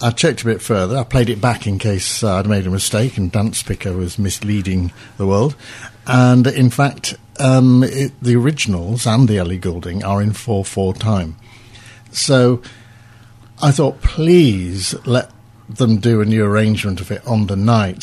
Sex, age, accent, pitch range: male, 50-69, British, 105-125 Hz